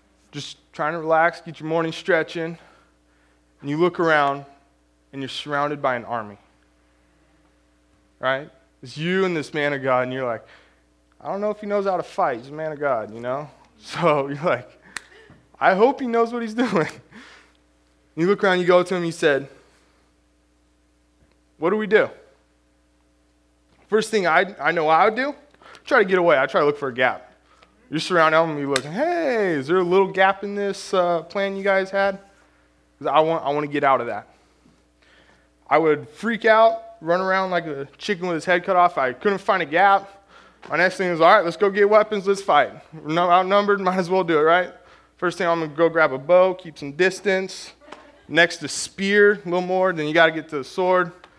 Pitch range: 130-185 Hz